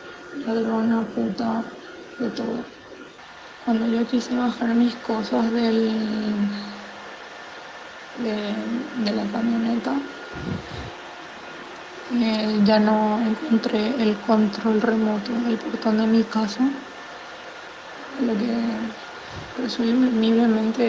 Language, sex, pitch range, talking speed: Spanish, female, 215-235 Hz, 85 wpm